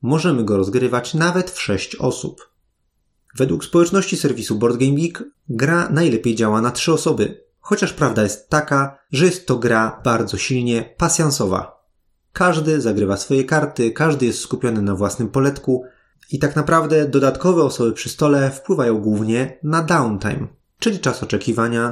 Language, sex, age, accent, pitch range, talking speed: Polish, male, 30-49, native, 110-155 Hz, 140 wpm